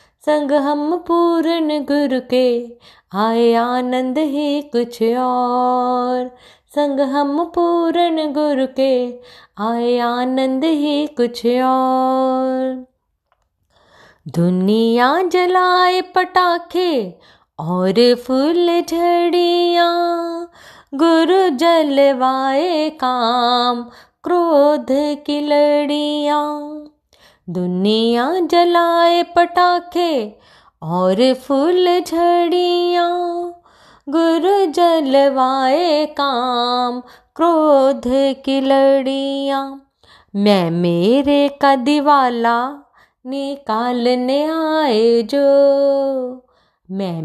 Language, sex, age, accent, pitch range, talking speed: Hindi, female, 20-39, native, 250-320 Hz, 65 wpm